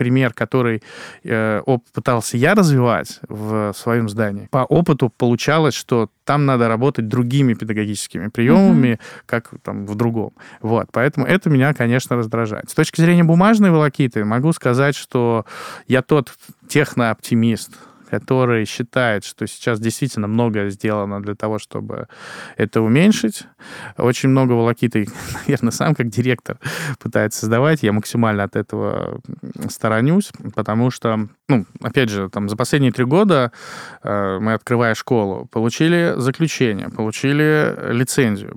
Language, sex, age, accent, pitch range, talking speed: Russian, male, 20-39, native, 110-140 Hz, 125 wpm